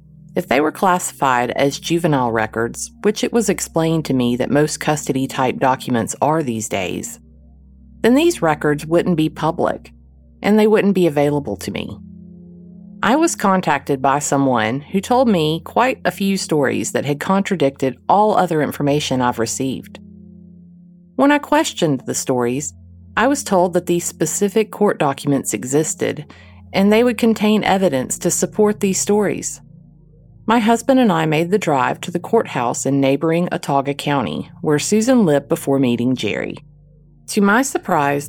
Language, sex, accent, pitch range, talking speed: English, female, American, 140-195 Hz, 155 wpm